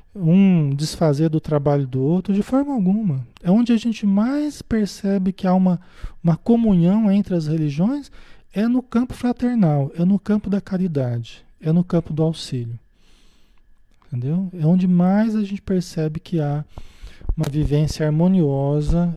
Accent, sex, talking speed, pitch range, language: Brazilian, male, 155 wpm, 145-200 Hz, Portuguese